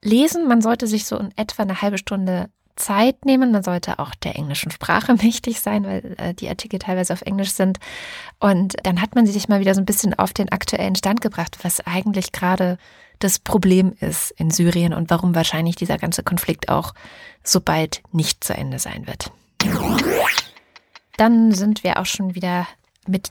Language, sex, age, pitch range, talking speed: German, female, 20-39, 180-225 Hz, 185 wpm